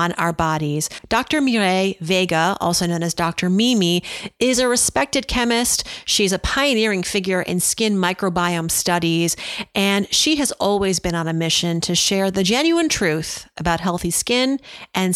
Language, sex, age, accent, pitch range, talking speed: English, female, 40-59, American, 175-230 Hz, 155 wpm